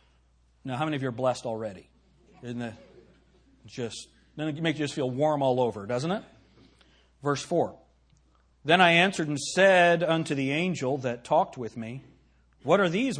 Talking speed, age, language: 170 wpm, 40-59, English